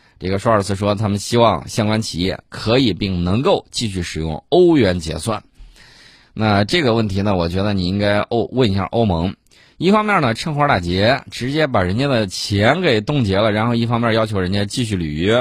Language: Chinese